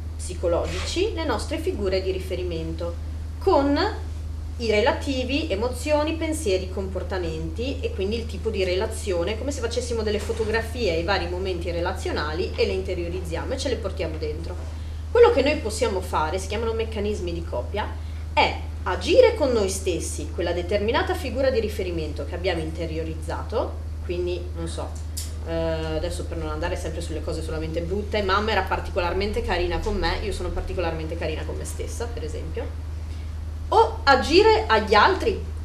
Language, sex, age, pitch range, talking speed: Italian, female, 30-49, 80-85 Hz, 150 wpm